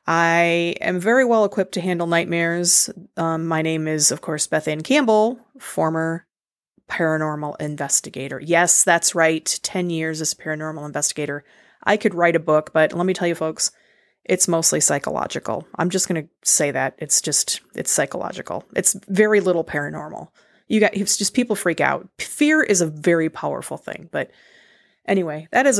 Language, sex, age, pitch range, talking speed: English, female, 30-49, 160-200 Hz, 170 wpm